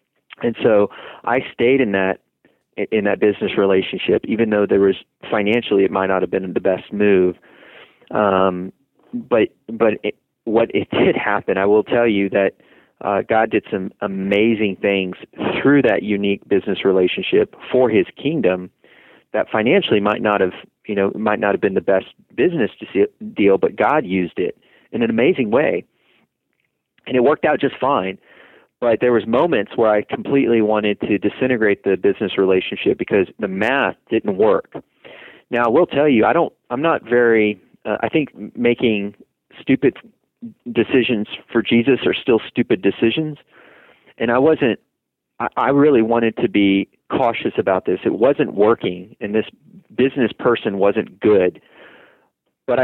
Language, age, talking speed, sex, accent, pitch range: English, 30-49, 165 wpm, male, American, 100-120 Hz